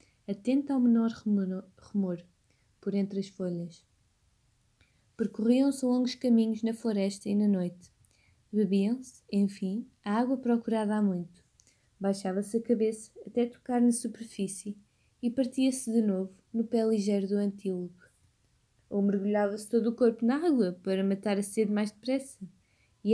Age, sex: 20-39, female